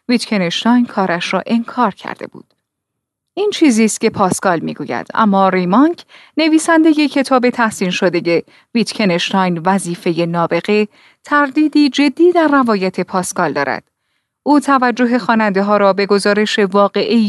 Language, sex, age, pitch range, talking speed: Persian, female, 30-49, 190-265 Hz, 125 wpm